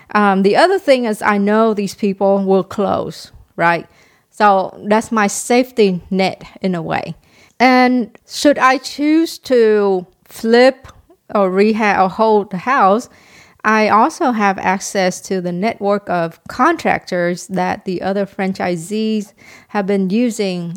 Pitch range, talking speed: 185-220 Hz, 140 wpm